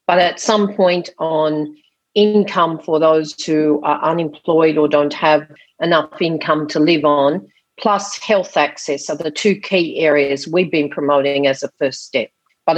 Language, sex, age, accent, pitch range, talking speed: English, female, 50-69, Australian, 155-200 Hz, 165 wpm